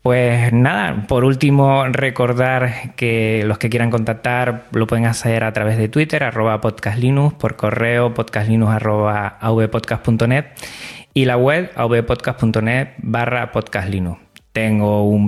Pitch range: 110-130 Hz